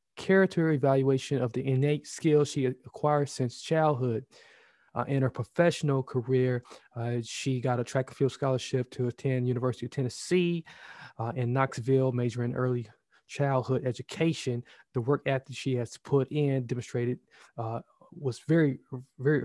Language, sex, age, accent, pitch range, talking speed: English, male, 20-39, American, 125-145 Hz, 150 wpm